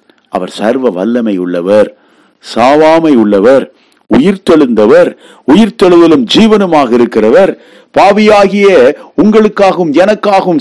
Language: Tamil